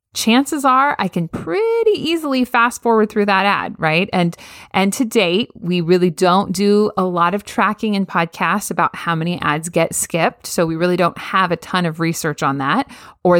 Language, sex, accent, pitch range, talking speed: English, female, American, 170-235 Hz, 195 wpm